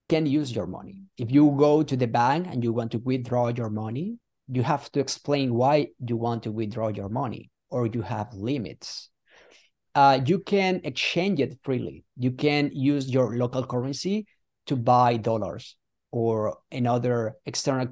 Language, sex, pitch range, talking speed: English, male, 120-155 Hz, 165 wpm